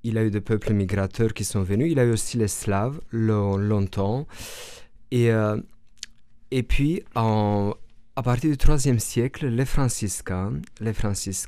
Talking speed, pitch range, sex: 165 wpm, 100-120 Hz, male